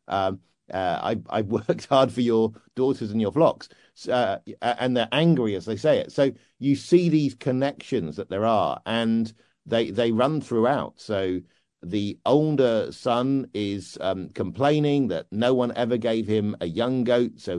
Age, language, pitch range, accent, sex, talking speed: 50-69, English, 105-130 Hz, British, male, 170 wpm